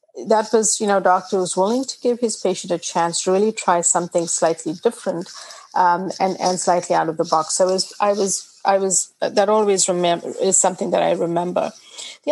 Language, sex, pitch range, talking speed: English, female, 185-220 Hz, 205 wpm